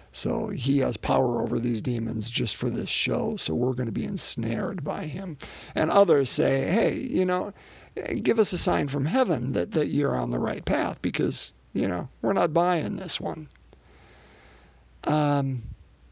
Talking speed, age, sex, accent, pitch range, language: 175 wpm, 50-69, male, American, 130-200 Hz, English